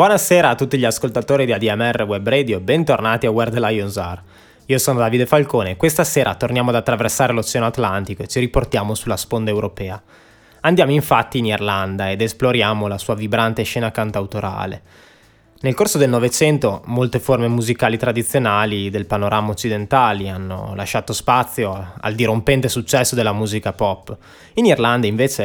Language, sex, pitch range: Italian, male, 100-125 Hz